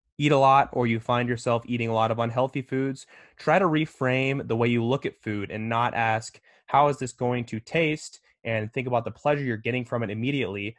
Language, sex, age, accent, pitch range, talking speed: English, male, 20-39, American, 110-130 Hz, 230 wpm